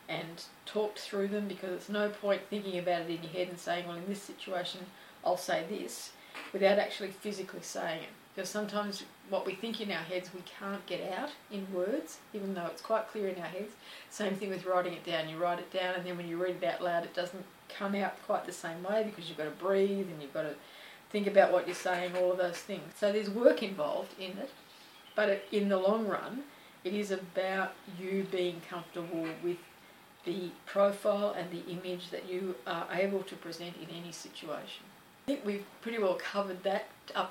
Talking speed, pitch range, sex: 215 wpm, 180-205 Hz, female